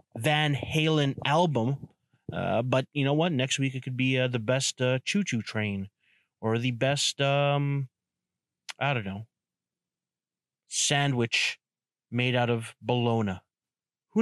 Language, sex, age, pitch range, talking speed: English, male, 30-49, 120-150 Hz, 140 wpm